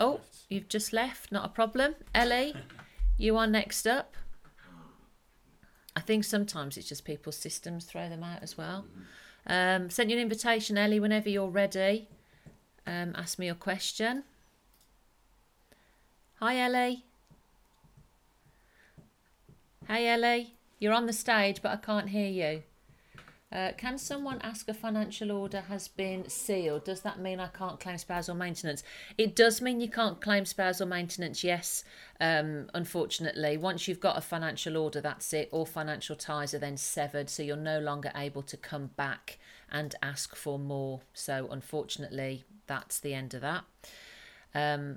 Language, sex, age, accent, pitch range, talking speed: English, female, 40-59, British, 150-220 Hz, 150 wpm